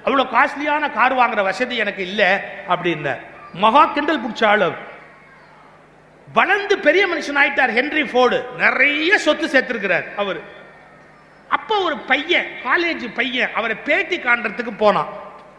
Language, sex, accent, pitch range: Tamil, male, native, 220-295 Hz